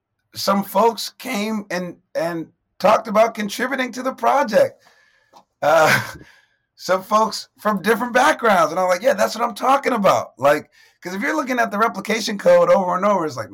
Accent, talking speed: American, 175 wpm